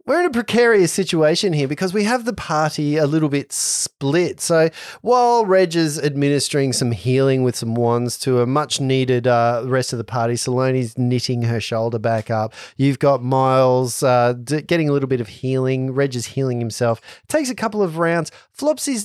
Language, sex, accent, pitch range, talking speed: English, male, Australian, 120-155 Hz, 185 wpm